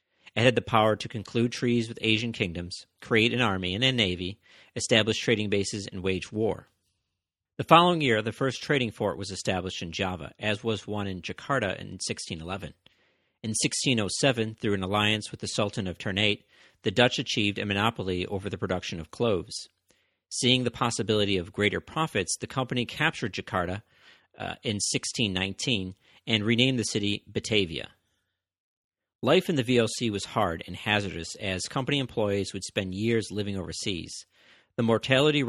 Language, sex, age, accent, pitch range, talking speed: English, male, 40-59, American, 95-120 Hz, 160 wpm